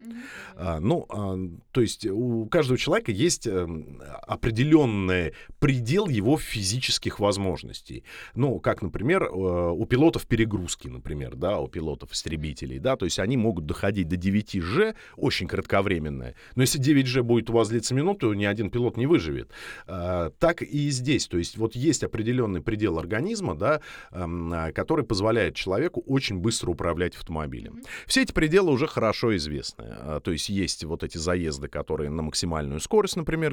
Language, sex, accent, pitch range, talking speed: Russian, male, native, 85-125 Hz, 145 wpm